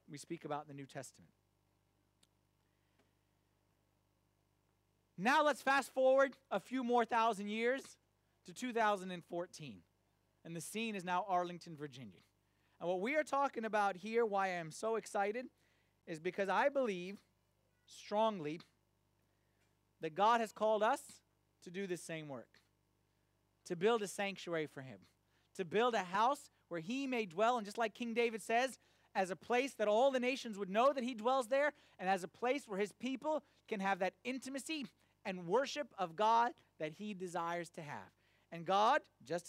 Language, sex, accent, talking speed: English, male, American, 165 wpm